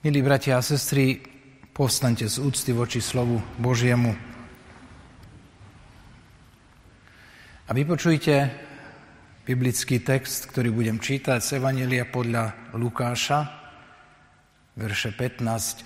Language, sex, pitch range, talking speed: Slovak, male, 115-150 Hz, 85 wpm